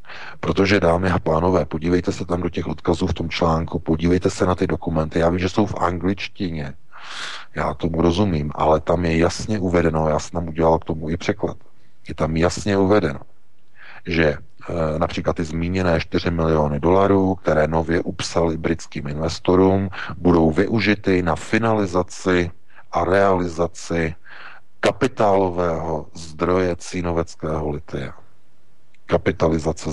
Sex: male